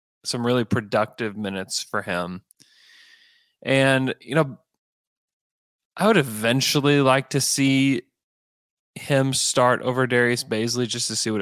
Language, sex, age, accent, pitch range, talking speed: English, male, 20-39, American, 110-140 Hz, 125 wpm